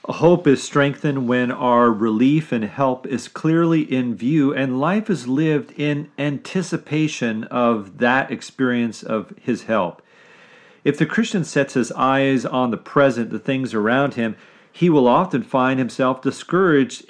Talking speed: 150 wpm